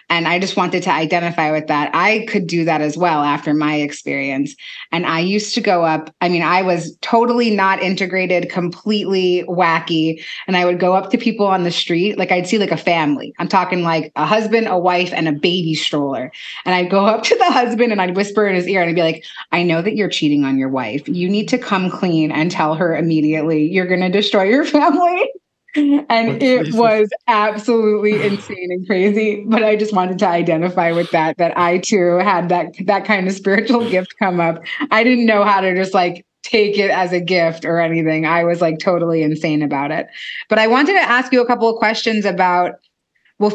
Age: 20-39